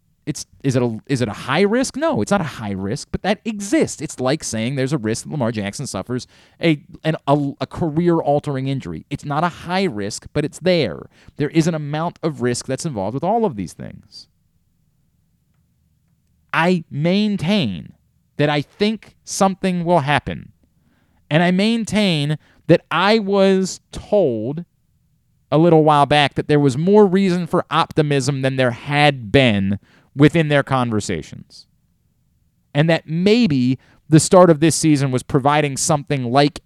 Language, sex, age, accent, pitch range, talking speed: English, male, 30-49, American, 135-195 Hz, 165 wpm